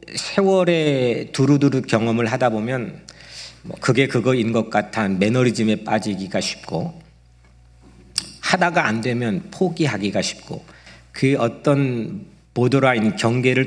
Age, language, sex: 50-69, Korean, male